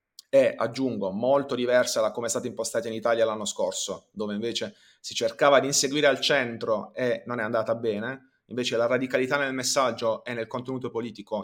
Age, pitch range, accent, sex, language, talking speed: 30-49, 115-135 Hz, native, male, Italian, 185 wpm